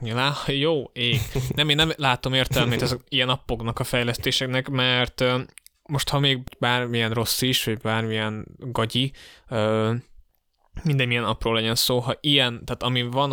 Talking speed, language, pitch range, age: 155 wpm, Hungarian, 110-125 Hz, 10-29